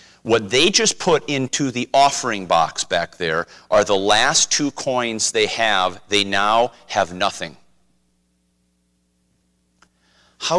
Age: 40-59